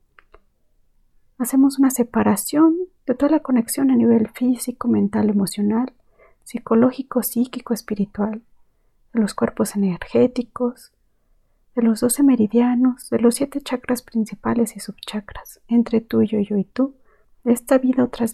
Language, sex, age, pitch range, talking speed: Spanish, female, 40-59, 220-250 Hz, 130 wpm